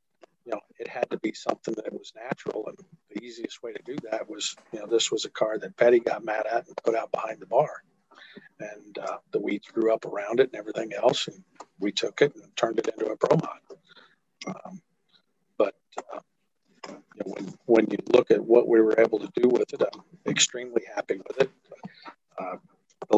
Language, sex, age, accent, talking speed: English, male, 50-69, American, 215 wpm